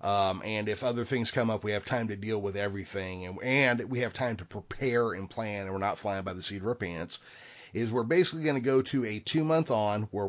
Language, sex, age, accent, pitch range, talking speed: English, male, 30-49, American, 100-125 Hz, 265 wpm